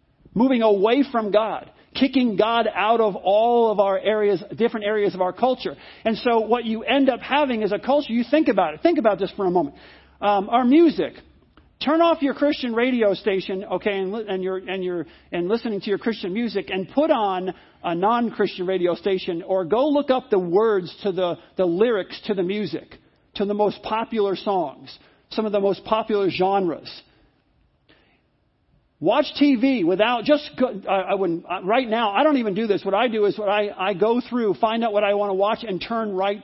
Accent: American